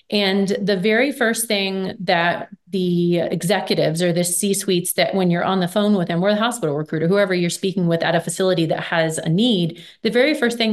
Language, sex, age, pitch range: English, female, 30-49, 175-205 Hz